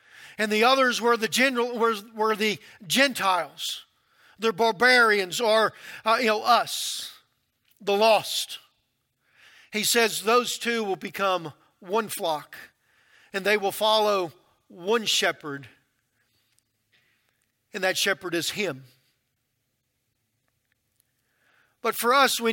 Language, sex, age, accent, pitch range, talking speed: English, male, 40-59, American, 175-235 Hz, 110 wpm